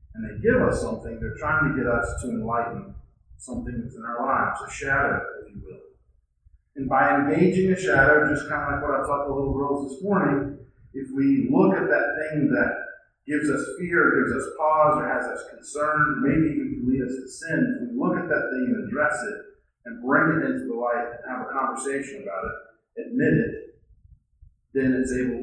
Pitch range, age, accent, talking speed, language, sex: 125-150 Hz, 40-59, American, 210 wpm, English, male